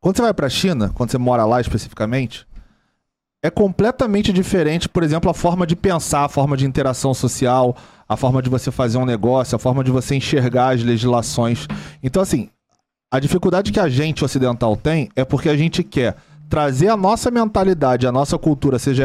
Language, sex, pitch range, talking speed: Portuguese, male, 125-165 Hz, 190 wpm